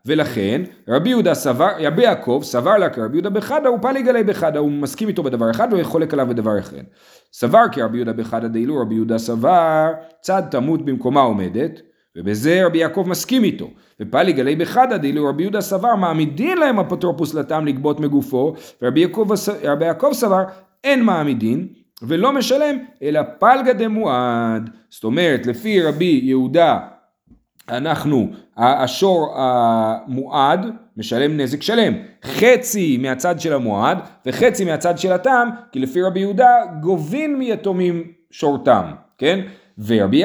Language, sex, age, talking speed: Hebrew, male, 40-59, 145 wpm